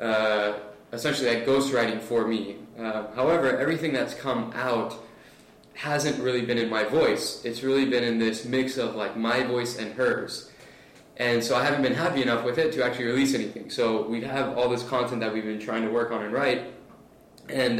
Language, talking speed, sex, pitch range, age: English, 200 wpm, male, 110-125 Hz, 20-39